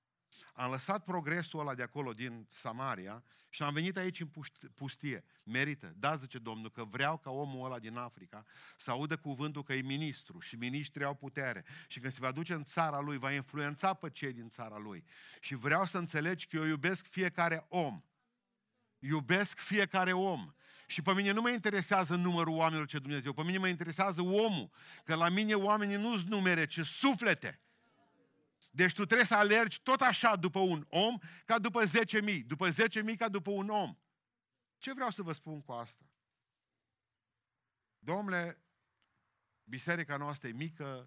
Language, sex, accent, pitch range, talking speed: Romanian, male, native, 130-185 Hz, 170 wpm